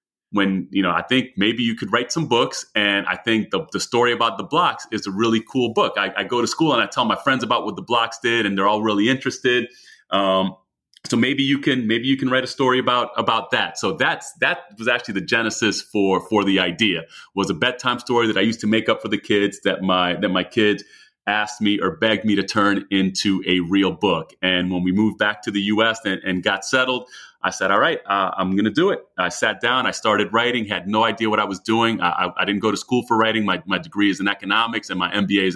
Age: 30-49